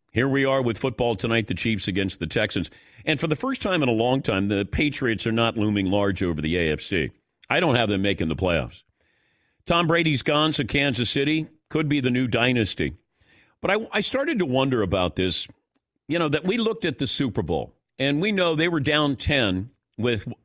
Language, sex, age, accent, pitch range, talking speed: English, male, 50-69, American, 115-165 Hz, 215 wpm